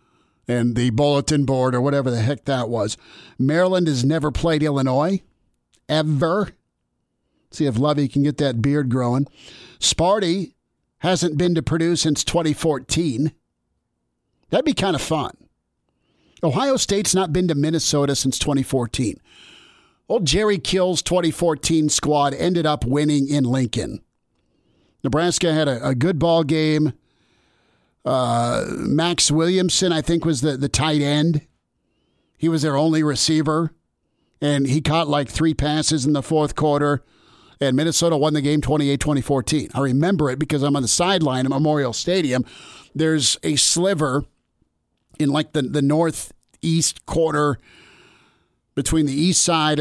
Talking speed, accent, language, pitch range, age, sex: 140 wpm, American, English, 135-160 Hz, 50-69, male